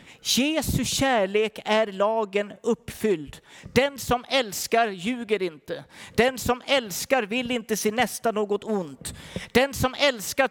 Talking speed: 125 wpm